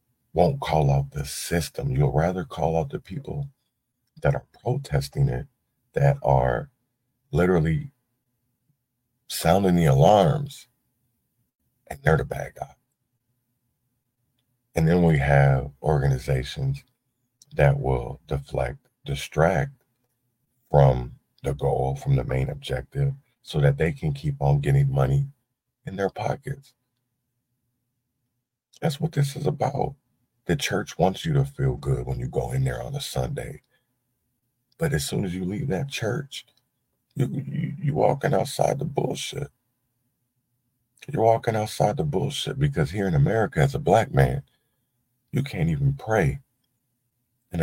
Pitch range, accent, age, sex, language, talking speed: 120-140 Hz, American, 40-59, male, English, 130 wpm